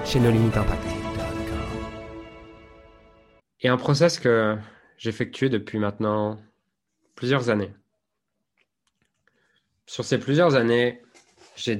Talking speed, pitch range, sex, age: 85 wpm, 110-135 Hz, male, 20-39